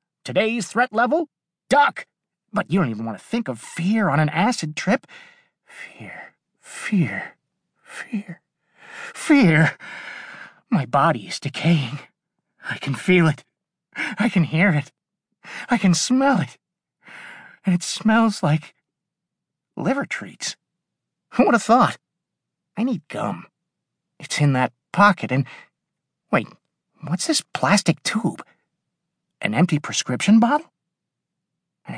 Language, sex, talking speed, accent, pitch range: English, male, 120 wpm, American, 155-240 Hz